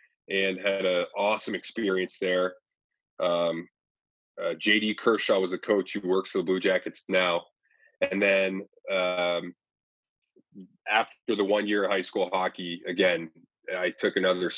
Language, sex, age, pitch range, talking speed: English, male, 20-39, 85-100 Hz, 145 wpm